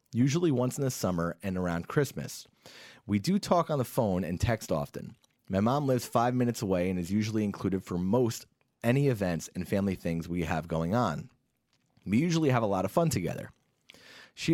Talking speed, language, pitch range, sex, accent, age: 195 wpm, English, 95-125 Hz, male, American, 30-49